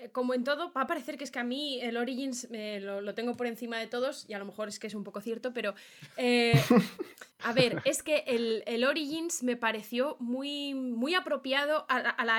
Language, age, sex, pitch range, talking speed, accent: Spanish, 20-39, female, 225-270 Hz, 230 wpm, Spanish